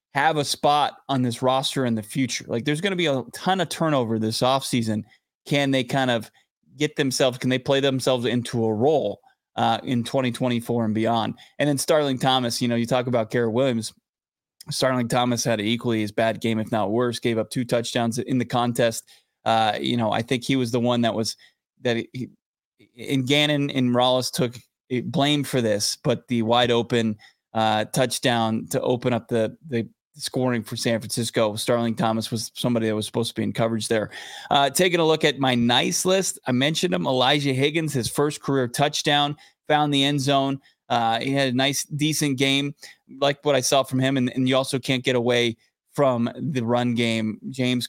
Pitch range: 115-135 Hz